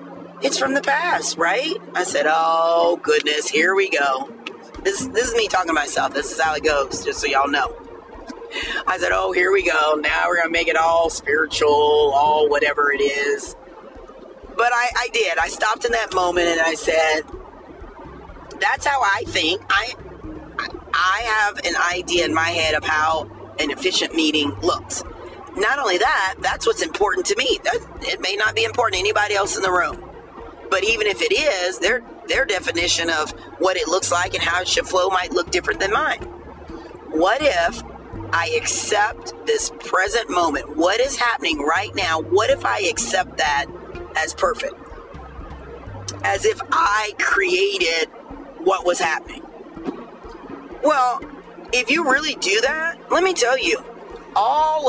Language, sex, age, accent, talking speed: English, female, 40-59, American, 170 wpm